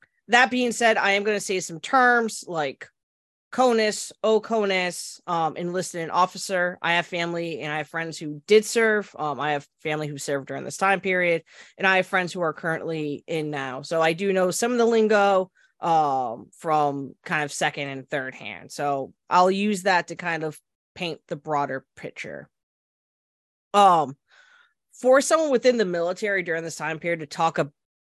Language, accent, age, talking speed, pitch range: English, American, 20-39, 180 wpm, 150-195 Hz